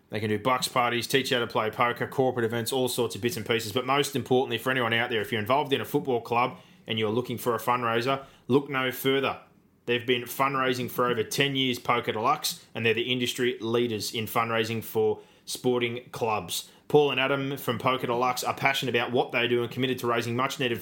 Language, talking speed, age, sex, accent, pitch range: English, 225 wpm, 20-39, male, Australian, 115-130 Hz